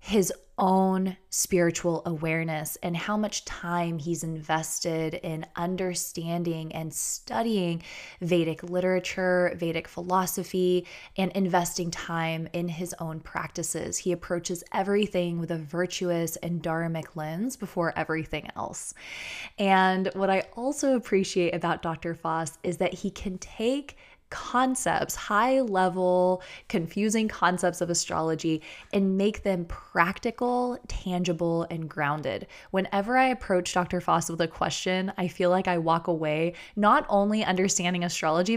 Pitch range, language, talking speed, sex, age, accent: 165-190 Hz, English, 125 wpm, female, 20-39, American